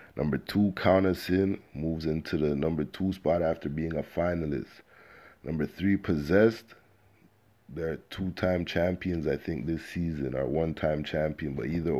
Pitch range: 80-95 Hz